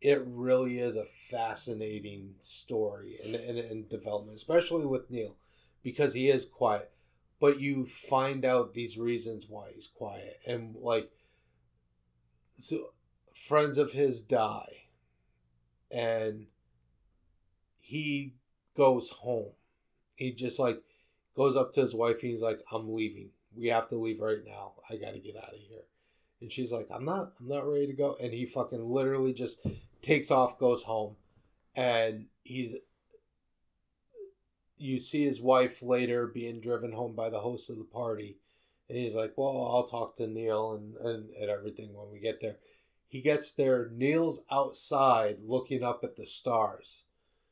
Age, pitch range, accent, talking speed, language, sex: 30-49, 105-130 Hz, American, 155 wpm, English, male